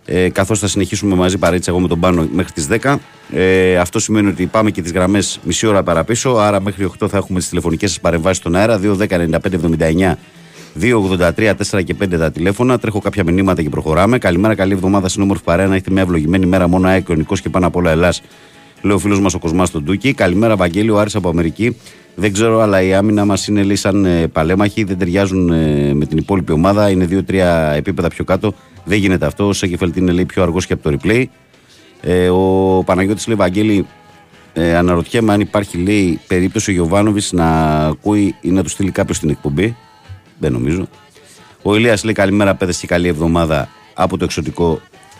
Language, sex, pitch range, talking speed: Greek, male, 85-100 Hz, 195 wpm